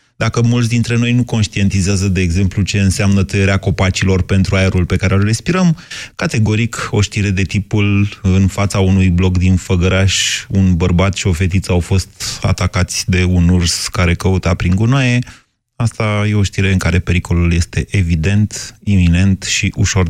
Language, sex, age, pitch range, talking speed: Romanian, male, 30-49, 95-120 Hz, 165 wpm